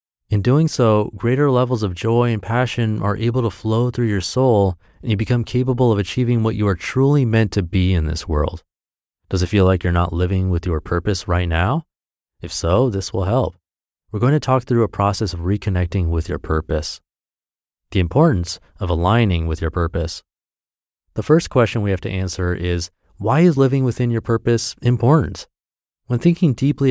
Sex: male